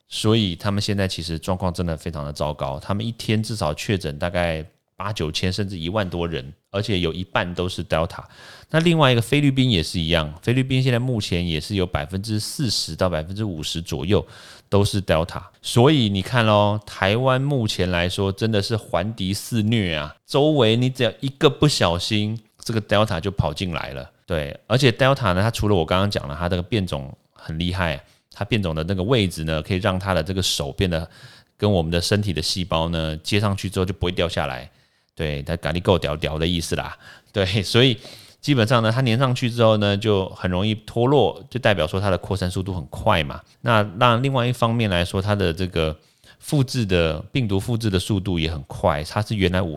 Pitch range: 85-115 Hz